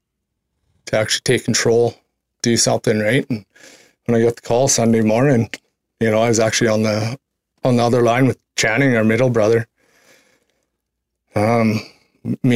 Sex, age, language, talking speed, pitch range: male, 20-39, English, 160 wpm, 110-125 Hz